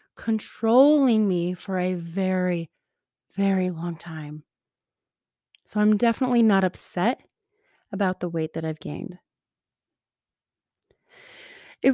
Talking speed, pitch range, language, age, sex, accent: 100 wpm, 210-280 Hz, English, 20-39, female, American